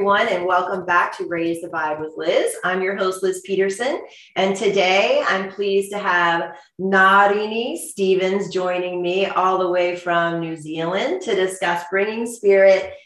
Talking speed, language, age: 155 wpm, English, 30-49